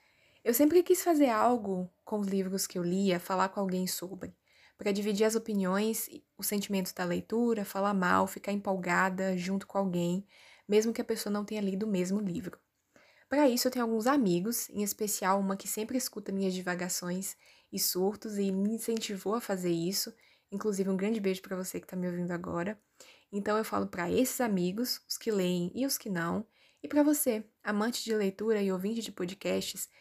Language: Portuguese